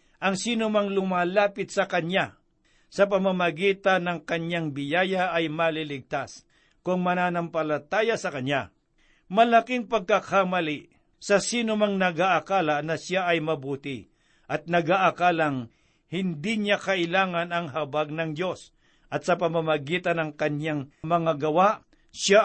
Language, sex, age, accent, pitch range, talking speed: Filipino, male, 60-79, native, 155-195 Hz, 120 wpm